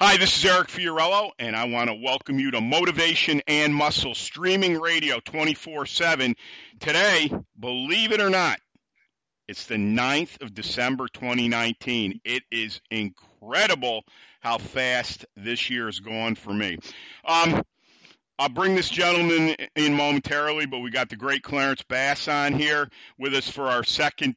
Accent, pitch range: American, 120-160 Hz